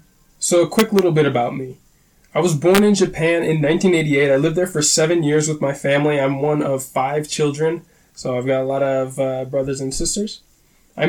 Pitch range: 140-170 Hz